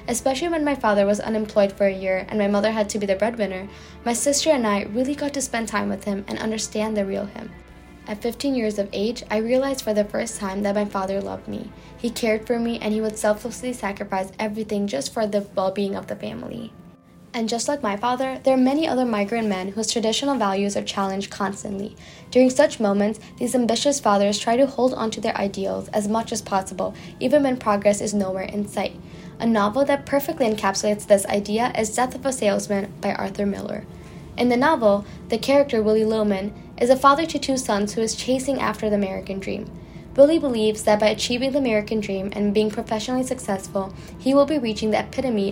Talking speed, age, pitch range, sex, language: 210 wpm, 10-29, 205-245 Hz, female, English